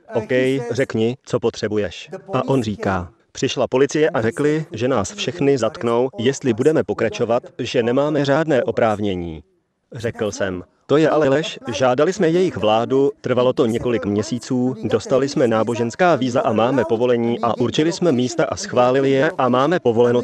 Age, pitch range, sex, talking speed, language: 30-49, 110-140 Hz, male, 155 wpm, Slovak